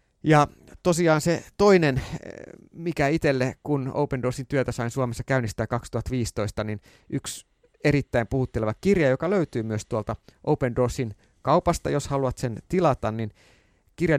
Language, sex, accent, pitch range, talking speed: Finnish, male, native, 110-150 Hz, 135 wpm